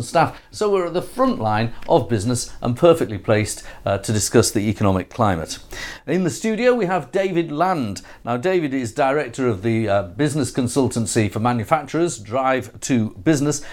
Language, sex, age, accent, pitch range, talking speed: English, male, 50-69, British, 115-155 Hz, 170 wpm